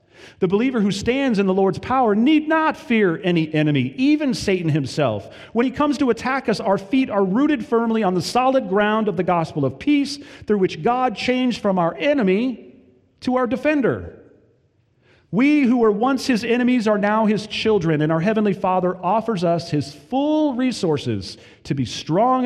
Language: English